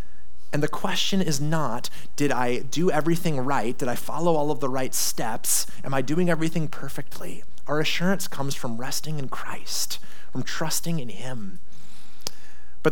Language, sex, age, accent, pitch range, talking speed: English, male, 30-49, American, 130-175 Hz, 165 wpm